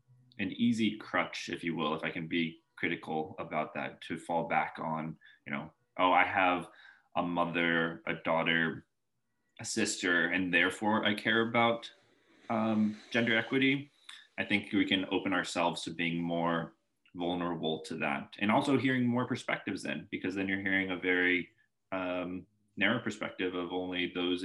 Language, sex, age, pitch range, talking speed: English, male, 20-39, 85-105 Hz, 160 wpm